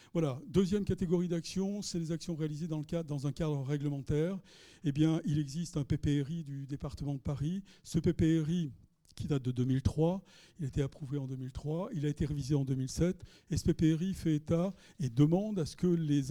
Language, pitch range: French, 140-165 Hz